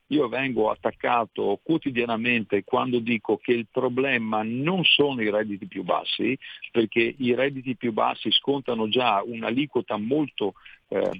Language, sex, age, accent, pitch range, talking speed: Italian, male, 50-69, native, 115-150 Hz, 135 wpm